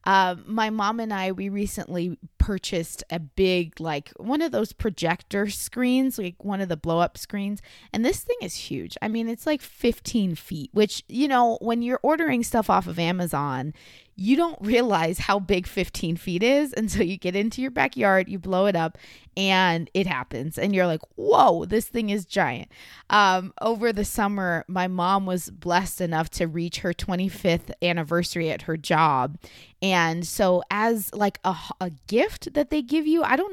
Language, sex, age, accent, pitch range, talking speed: English, female, 20-39, American, 170-220 Hz, 190 wpm